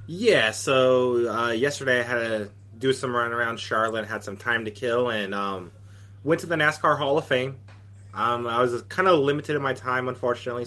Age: 20-39